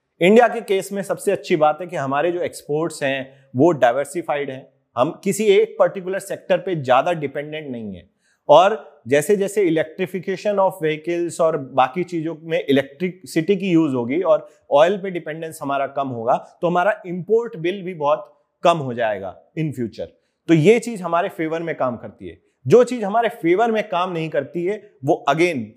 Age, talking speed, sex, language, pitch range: 30-49, 115 wpm, male, English, 145-190 Hz